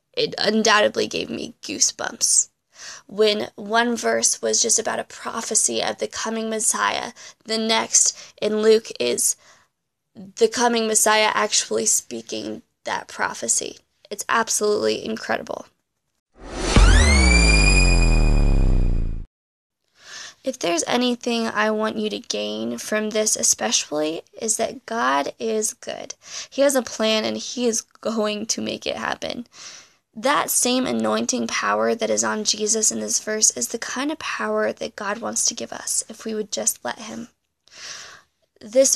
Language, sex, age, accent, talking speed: English, female, 20-39, American, 135 wpm